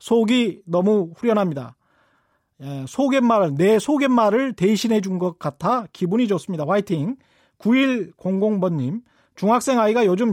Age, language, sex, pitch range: 40-59, Korean, male, 180-240 Hz